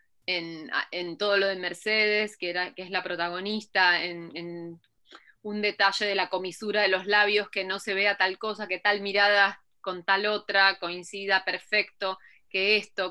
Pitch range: 180-210 Hz